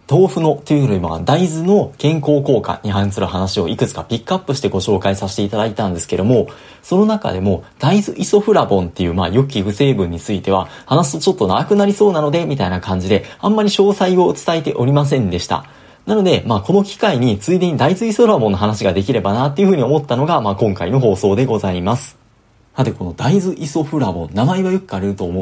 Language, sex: Japanese, male